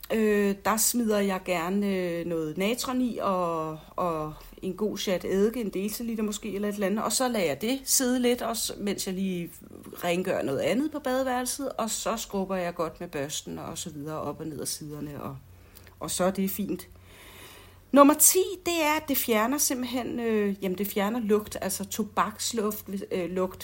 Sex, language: female, Danish